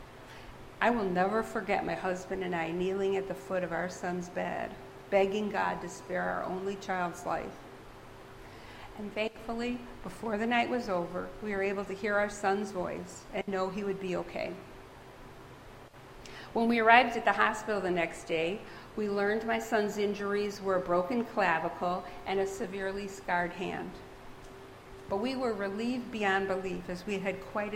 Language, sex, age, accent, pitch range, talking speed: English, female, 50-69, American, 185-225 Hz, 170 wpm